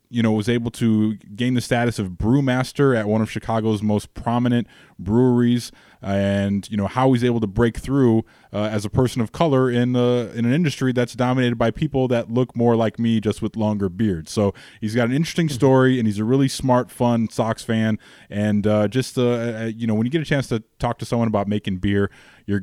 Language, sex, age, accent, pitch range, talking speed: English, male, 20-39, American, 100-120 Hz, 220 wpm